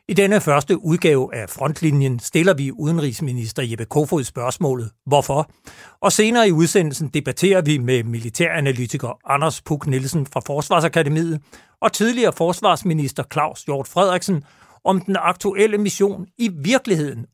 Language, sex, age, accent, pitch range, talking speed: Danish, male, 60-79, native, 140-185 Hz, 130 wpm